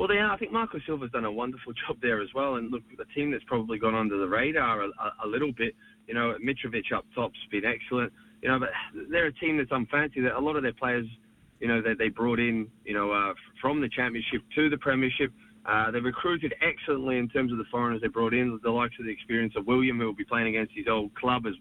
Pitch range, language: 110-130 Hz, English